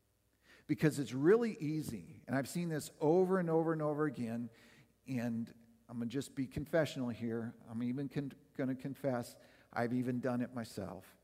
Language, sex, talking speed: English, male, 175 wpm